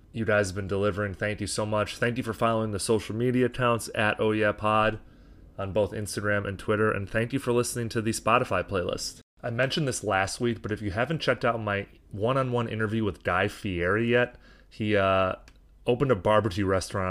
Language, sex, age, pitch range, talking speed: English, male, 30-49, 95-110 Hz, 205 wpm